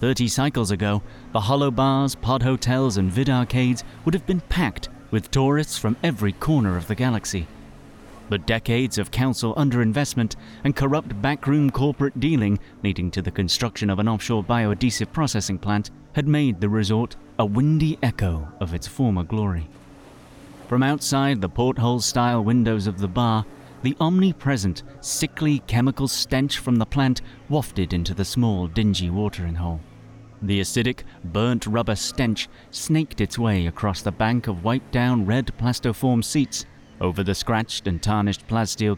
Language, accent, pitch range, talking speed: English, British, 95-130 Hz, 150 wpm